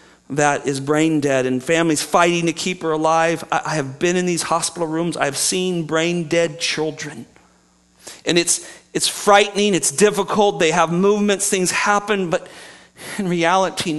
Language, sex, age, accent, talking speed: English, male, 40-59, American, 160 wpm